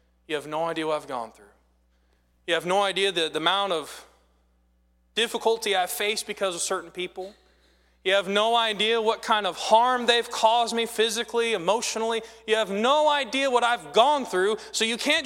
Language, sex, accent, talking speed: English, male, American, 185 wpm